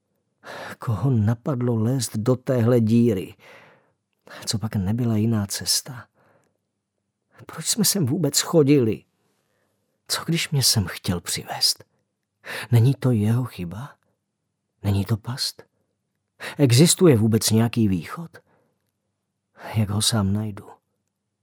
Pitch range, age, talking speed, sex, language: 100-125 Hz, 40-59, 105 wpm, male, Czech